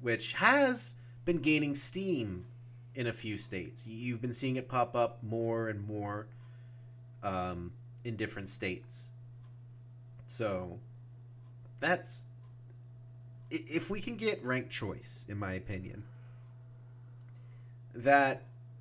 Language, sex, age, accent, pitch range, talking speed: English, male, 30-49, American, 110-120 Hz, 110 wpm